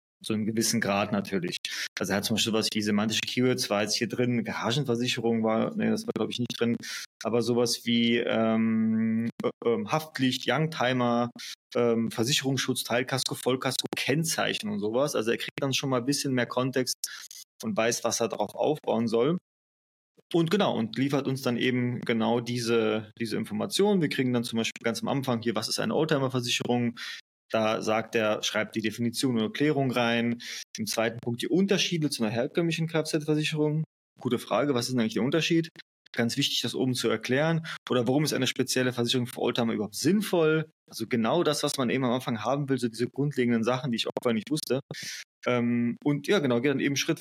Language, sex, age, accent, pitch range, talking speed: German, male, 20-39, German, 115-145 Hz, 190 wpm